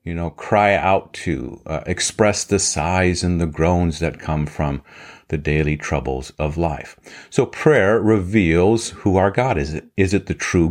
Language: English